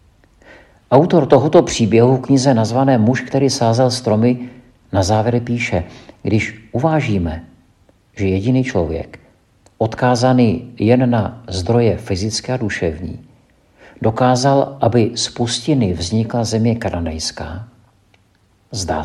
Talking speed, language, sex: 100 wpm, Czech, male